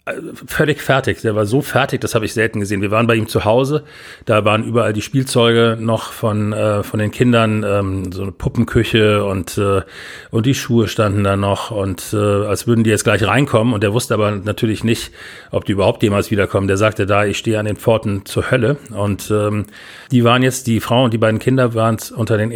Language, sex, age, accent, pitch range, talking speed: German, male, 40-59, German, 105-120 Hz, 225 wpm